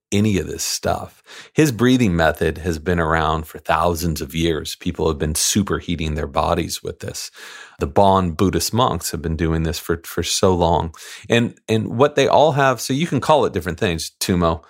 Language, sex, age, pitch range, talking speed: English, male, 40-59, 85-105 Hz, 195 wpm